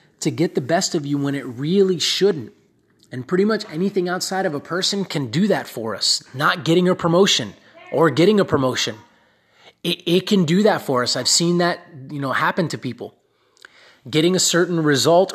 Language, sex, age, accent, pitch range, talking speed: English, male, 30-49, American, 135-175 Hz, 195 wpm